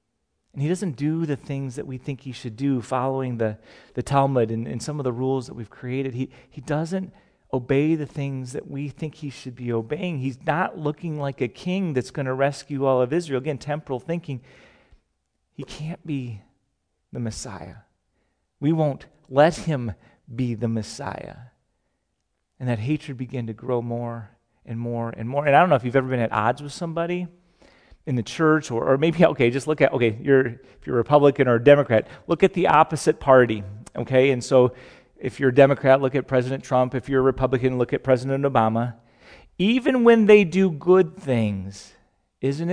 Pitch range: 120-155 Hz